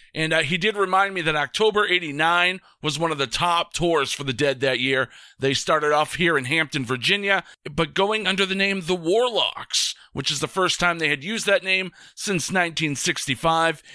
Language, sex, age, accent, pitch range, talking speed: English, male, 40-59, American, 145-180 Hz, 200 wpm